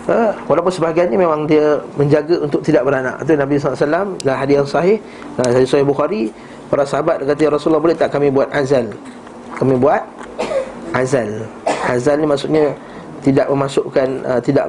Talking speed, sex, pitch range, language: 160 wpm, male, 140-175 Hz, Malay